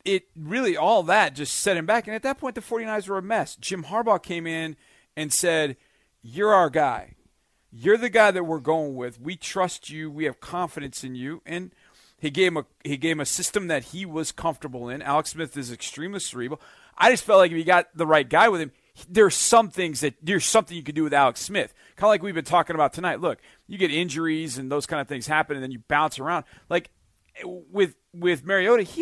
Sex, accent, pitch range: male, American, 150-195 Hz